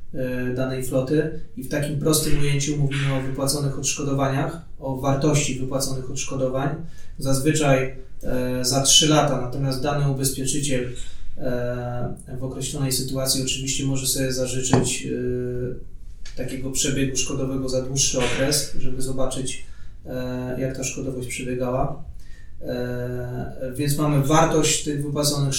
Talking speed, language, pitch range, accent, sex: 110 wpm, Polish, 130-145 Hz, native, male